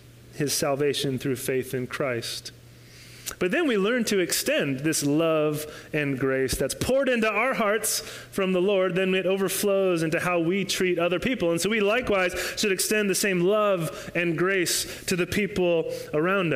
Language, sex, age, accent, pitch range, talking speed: English, male, 30-49, American, 145-210 Hz, 175 wpm